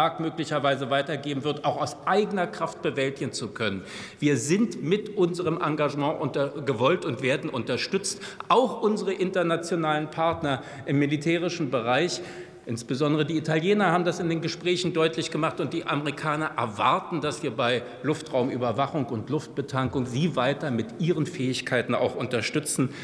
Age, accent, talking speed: 50-69, German, 140 wpm